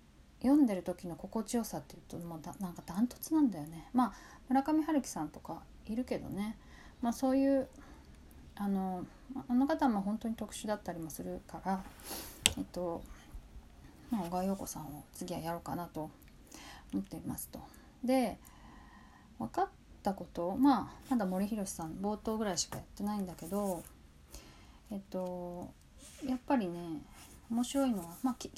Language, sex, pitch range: Japanese, female, 175-260 Hz